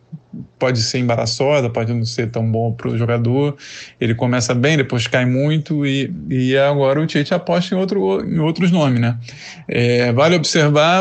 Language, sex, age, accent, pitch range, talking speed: Portuguese, male, 20-39, Brazilian, 120-145 Hz, 175 wpm